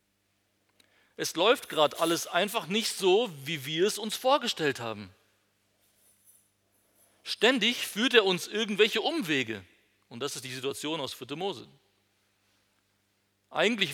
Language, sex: German, male